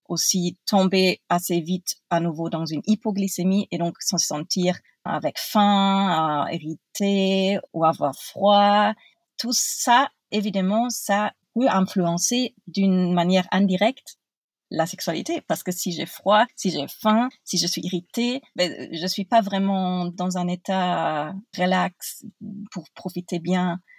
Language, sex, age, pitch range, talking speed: French, female, 30-49, 175-210 Hz, 135 wpm